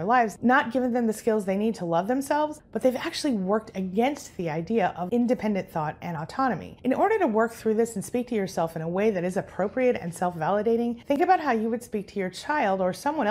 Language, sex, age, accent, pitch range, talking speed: English, female, 30-49, American, 185-250 Hz, 235 wpm